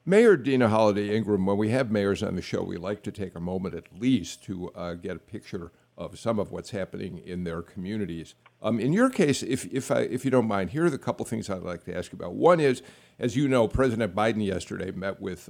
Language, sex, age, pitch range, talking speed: English, male, 50-69, 100-130 Hz, 250 wpm